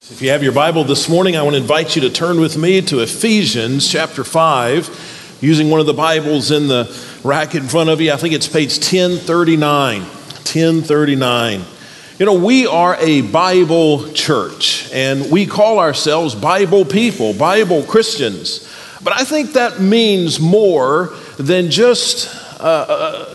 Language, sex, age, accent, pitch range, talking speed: English, male, 40-59, American, 160-225 Hz, 160 wpm